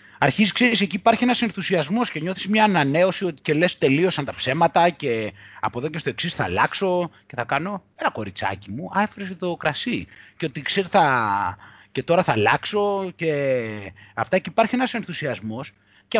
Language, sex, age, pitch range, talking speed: Greek, male, 30-49, 145-230 Hz, 165 wpm